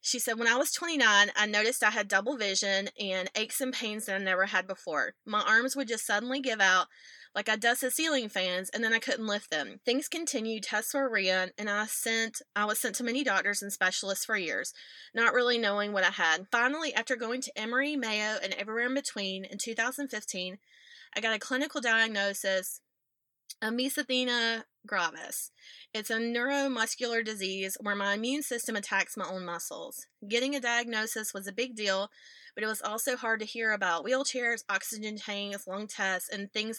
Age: 20-39